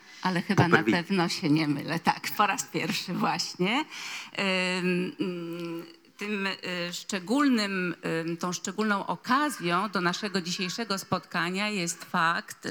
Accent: native